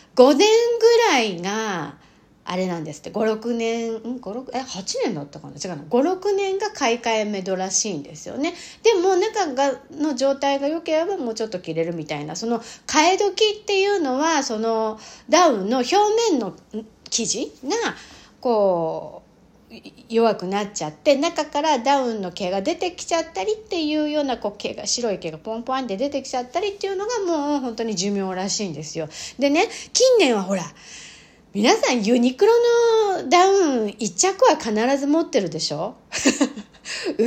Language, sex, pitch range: Japanese, female, 195-325 Hz